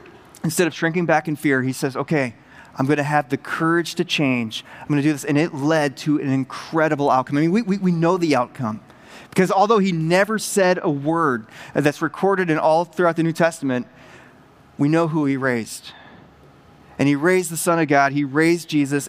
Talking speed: 210 wpm